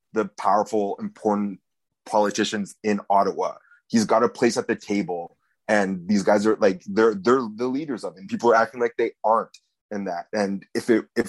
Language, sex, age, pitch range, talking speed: English, male, 30-49, 105-140 Hz, 185 wpm